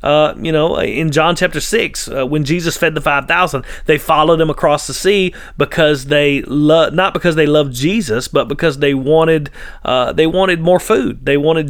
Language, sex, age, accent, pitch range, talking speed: English, male, 30-49, American, 150-185 Hz, 200 wpm